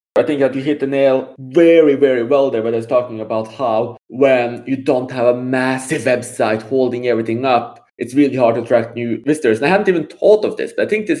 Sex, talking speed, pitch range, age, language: male, 240 wpm, 115-140 Hz, 20-39, English